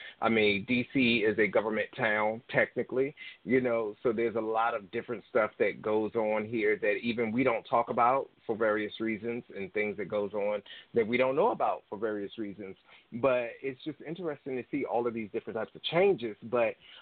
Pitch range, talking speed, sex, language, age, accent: 115-150 Hz, 200 wpm, male, English, 30-49, American